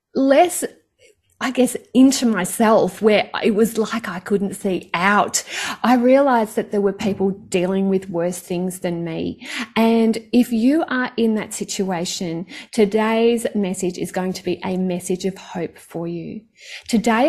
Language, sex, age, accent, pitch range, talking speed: English, female, 30-49, Australian, 185-225 Hz, 155 wpm